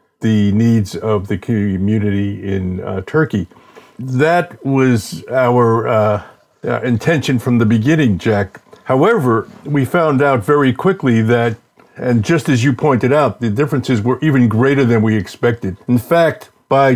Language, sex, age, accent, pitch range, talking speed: English, male, 50-69, American, 115-145 Hz, 150 wpm